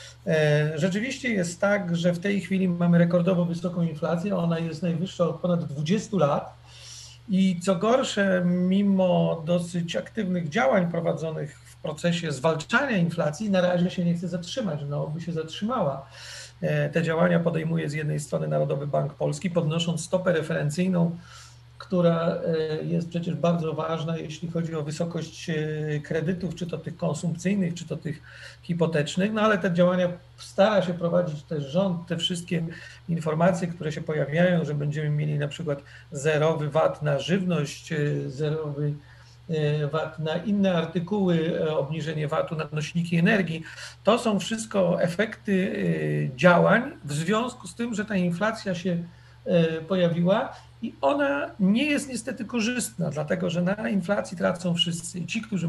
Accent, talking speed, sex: native, 145 wpm, male